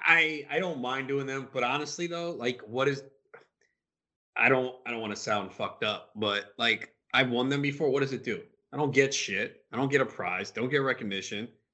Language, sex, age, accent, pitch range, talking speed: English, male, 30-49, American, 110-140 Hz, 220 wpm